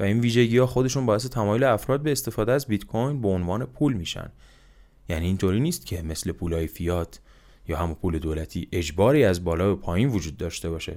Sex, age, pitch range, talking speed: male, 20-39, 90-120 Hz, 190 wpm